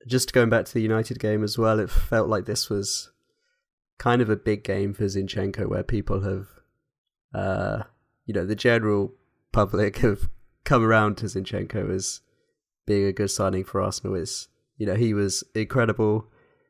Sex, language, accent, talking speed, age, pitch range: male, English, British, 175 wpm, 20-39, 100-115 Hz